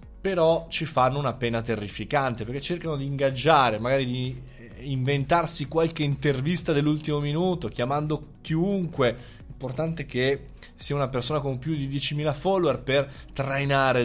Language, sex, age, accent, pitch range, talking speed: Italian, male, 20-39, native, 115-160 Hz, 135 wpm